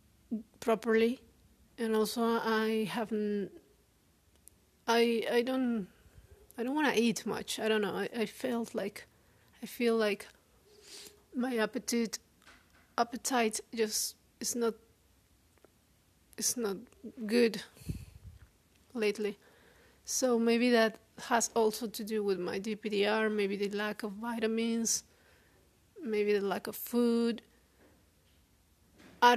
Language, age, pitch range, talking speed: English, 30-49, 205-230 Hz, 110 wpm